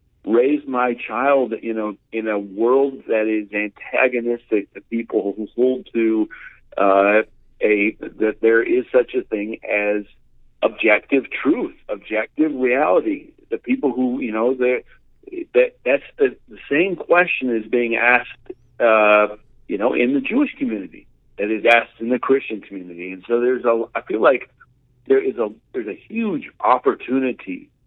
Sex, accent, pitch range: male, American, 105-140 Hz